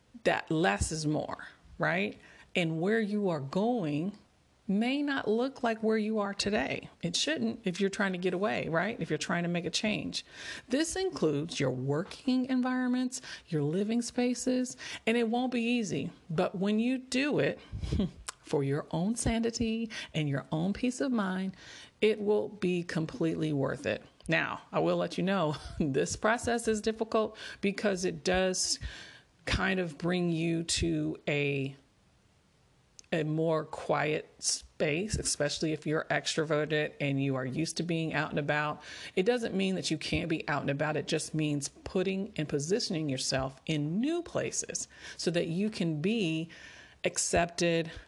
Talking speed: 160 wpm